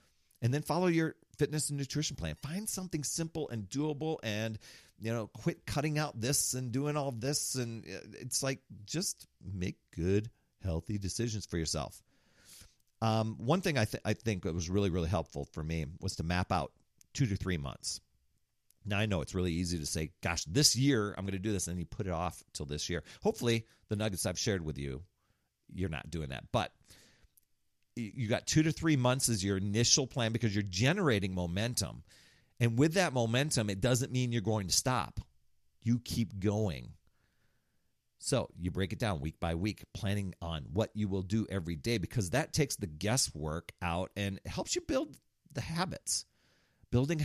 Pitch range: 90-125 Hz